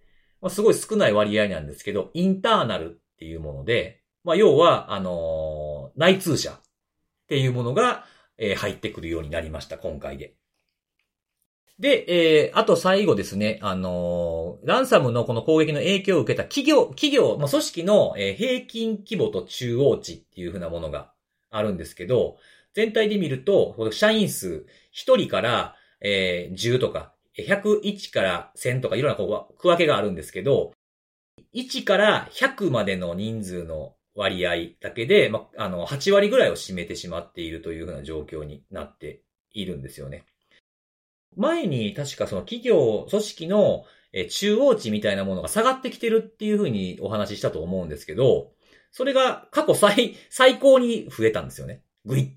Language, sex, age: Japanese, male, 40-59